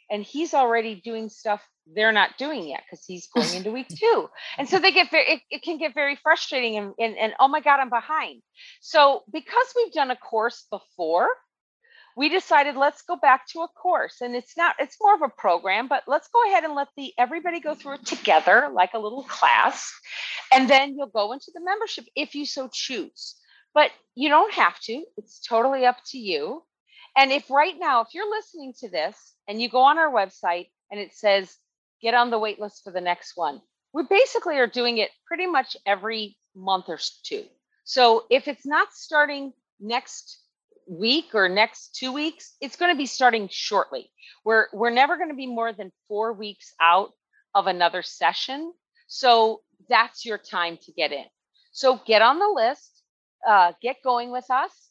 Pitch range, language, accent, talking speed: 220-315 Hz, English, American, 195 wpm